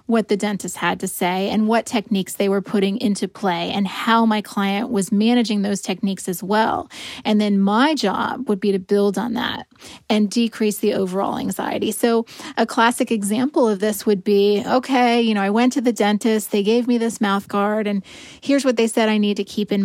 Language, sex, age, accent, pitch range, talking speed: English, female, 30-49, American, 205-240 Hz, 215 wpm